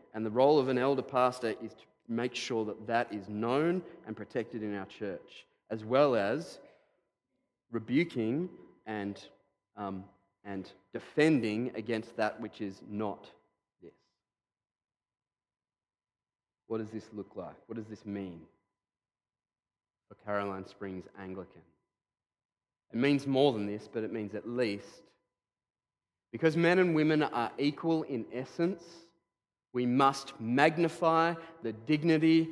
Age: 30-49